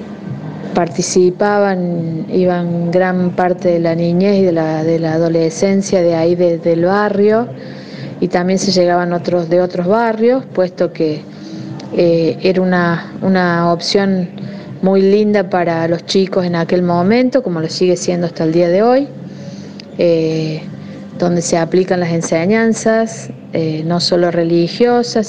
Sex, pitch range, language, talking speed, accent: female, 170-200 Hz, Spanish, 140 wpm, Argentinian